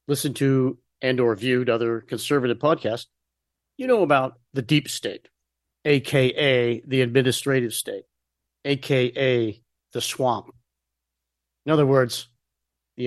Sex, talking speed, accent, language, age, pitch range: male, 115 wpm, American, English, 50-69, 110-135 Hz